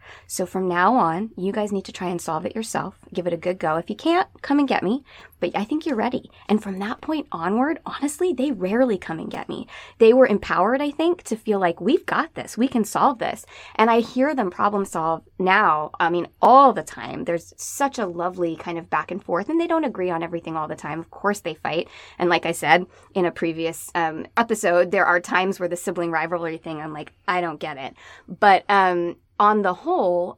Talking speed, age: 235 wpm, 20-39